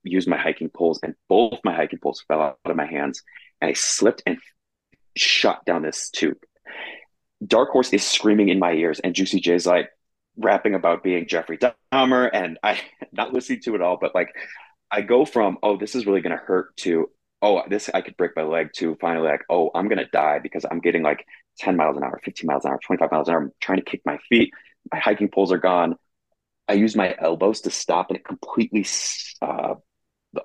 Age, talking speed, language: 30-49, 220 wpm, English